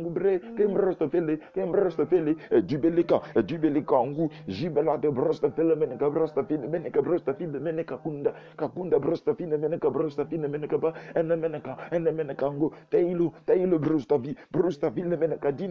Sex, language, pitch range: male, English, 145-190 Hz